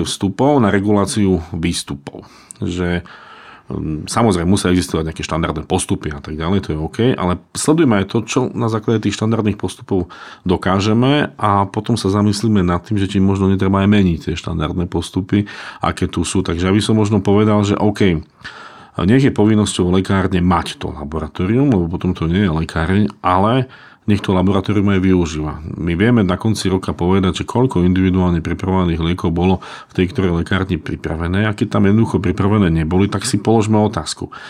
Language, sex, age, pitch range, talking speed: Slovak, male, 40-59, 85-105 Hz, 170 wpm